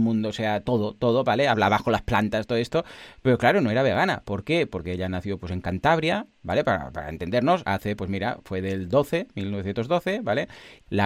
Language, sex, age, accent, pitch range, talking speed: Spanish, male, 30-49, Spanish, 105-145 Hz, 205 wpm